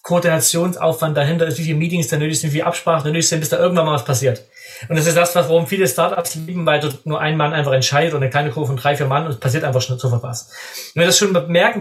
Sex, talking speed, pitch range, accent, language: male, 290 wpm, 145-180 Hz, German, German